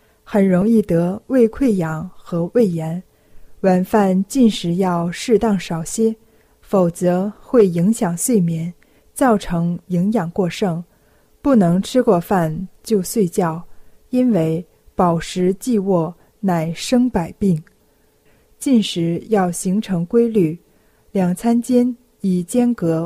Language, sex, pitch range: Chinese, female, 170-225 Hz